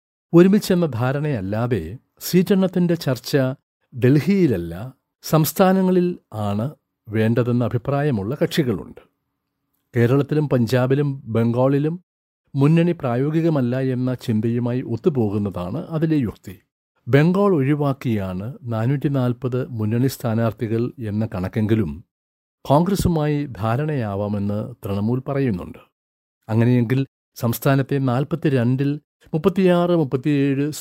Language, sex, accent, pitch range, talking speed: Malayalam, male, native, 115-145 Hz, 70 wpm